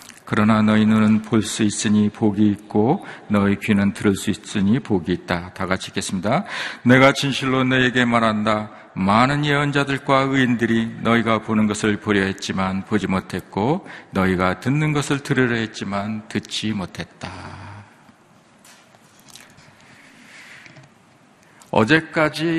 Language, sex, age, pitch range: Korean, male, 50-69, 105-150 Hz